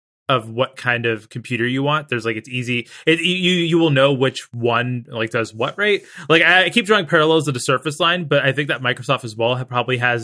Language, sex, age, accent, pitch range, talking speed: English, male, 20-39, American, 120-150 Hz, 235 wpm